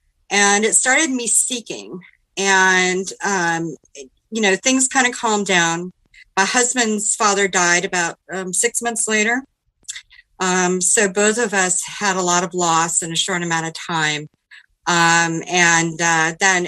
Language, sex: English, female